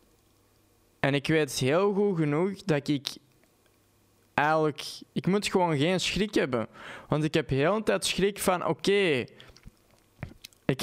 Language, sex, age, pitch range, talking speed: Dutch, male, 20-39, 130-170 Hz, 145 wpm